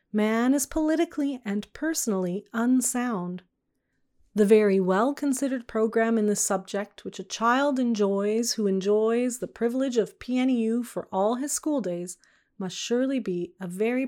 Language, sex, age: English, female, 30-49